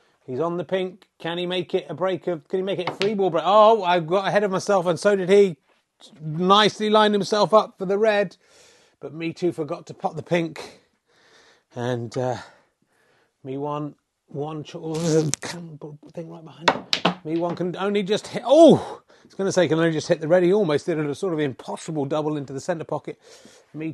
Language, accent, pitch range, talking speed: English, British, 155-195 Hz, 215 wpm